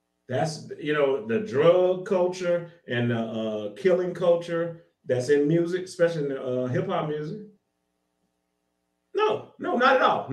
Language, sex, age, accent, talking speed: English, male, 30-49, American, 145 wpm